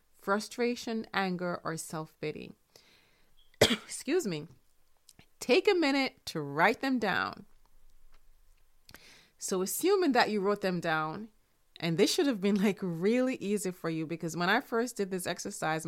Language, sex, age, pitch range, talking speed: English, female, 30-49, 160-225 Hz, 145 wpm